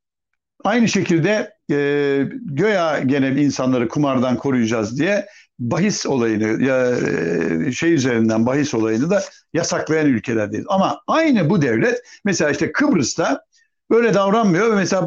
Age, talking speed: 60-79, 125 wpm